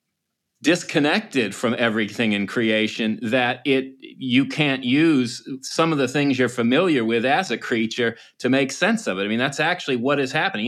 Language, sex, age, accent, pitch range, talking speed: English, male, 30-49, American, 115-150 Hz, 180 wpm